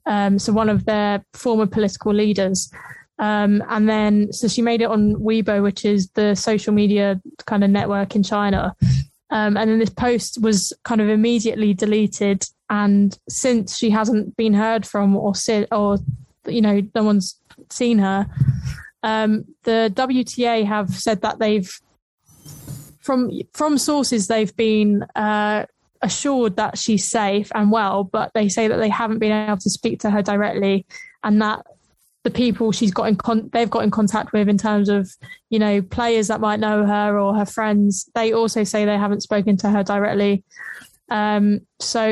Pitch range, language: 205-225 Hz, English